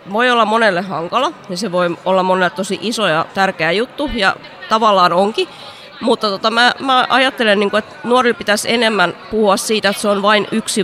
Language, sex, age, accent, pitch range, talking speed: Finnish, female, 20-39, native, 180-225 Hz, 185 wpm